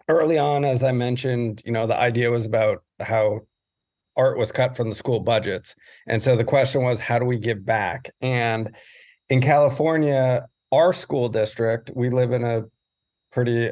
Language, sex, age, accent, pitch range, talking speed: English, male, 40-59, American, 115-130 Hz, 175 wpm